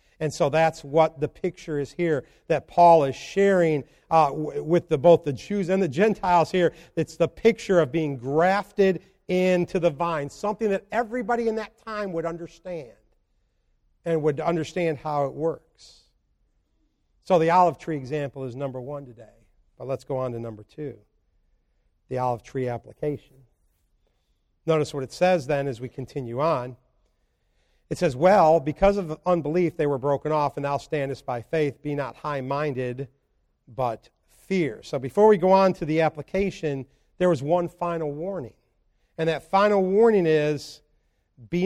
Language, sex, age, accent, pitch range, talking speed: English, male, 50-69, American, 140-180 Hz, 160 wpm